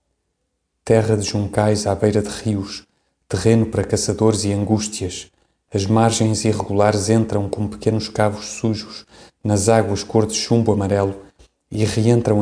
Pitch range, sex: 100-110 Hz, male